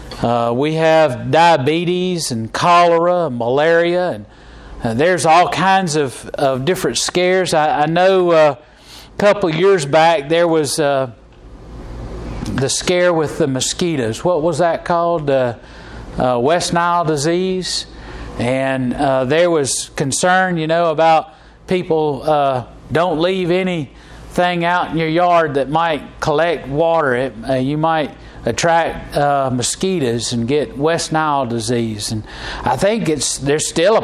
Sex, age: male, 40-59